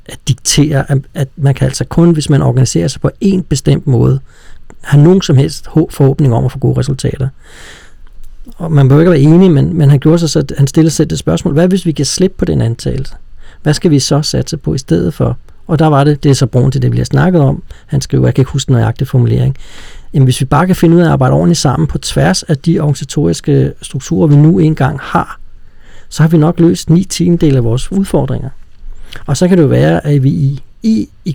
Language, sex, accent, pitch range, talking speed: Danish, male, native, 130-160 Hz, 230 wpm